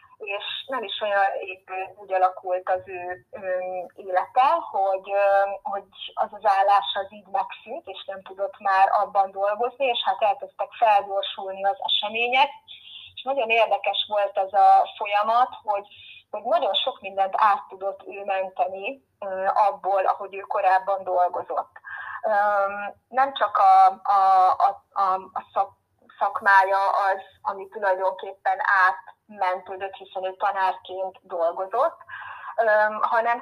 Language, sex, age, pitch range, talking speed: Hungarian, female, 20-39, 190-225 Hz, 125 wpm